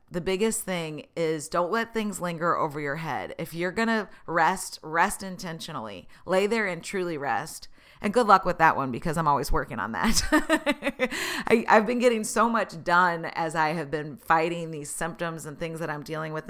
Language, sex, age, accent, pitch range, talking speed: English, female, 30-49, American, 155-190 Hz, 195 wpm